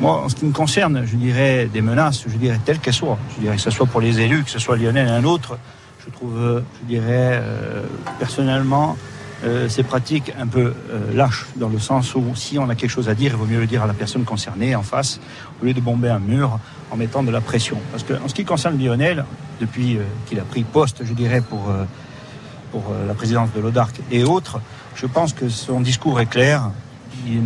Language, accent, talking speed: French, French, 235 wpm